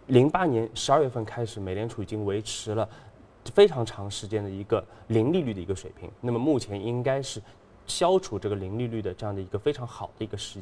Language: Chinese